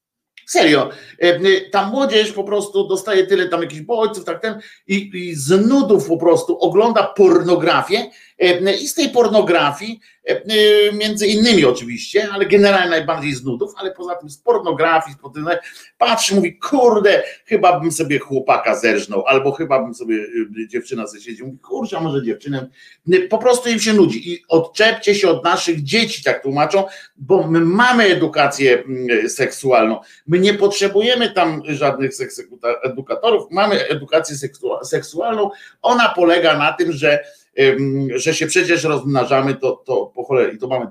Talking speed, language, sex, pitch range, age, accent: 145 wpm, Polish, male, 145-210 Hz, 50-69, native